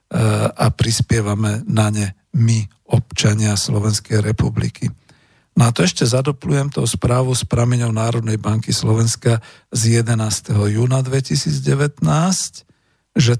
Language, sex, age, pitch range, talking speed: Slovak, male, 50-69, 115-150 Hz, 110 wpm